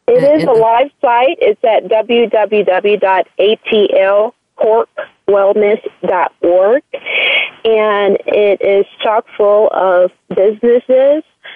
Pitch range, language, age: 200-260 Hz, English, 30-49